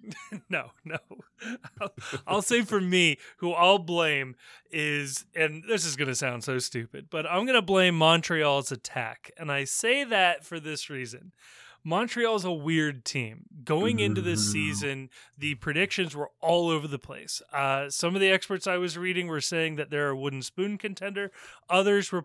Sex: male